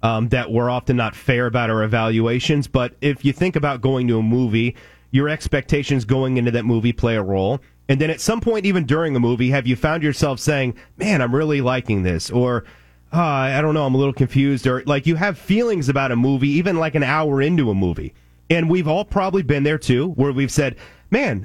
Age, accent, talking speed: 30-49, American, 225 wpm